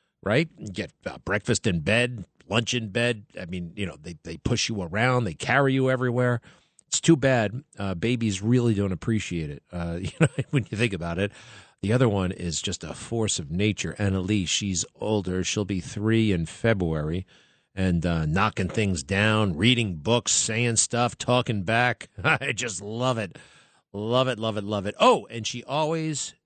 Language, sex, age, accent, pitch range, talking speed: English, male, 50-69, American, 100-130 Hz, 185 wpm